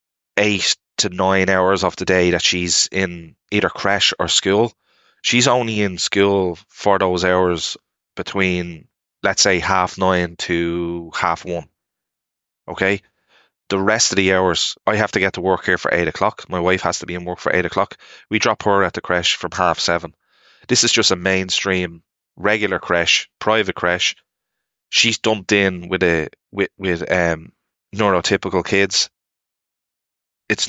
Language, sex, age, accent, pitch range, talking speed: English, male, 20-39, Irish, 90-100 Hz, 165 wpm